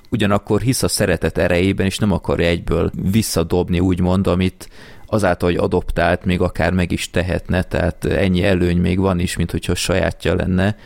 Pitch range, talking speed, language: 85-105 Hz, 165 wpm, Hungarian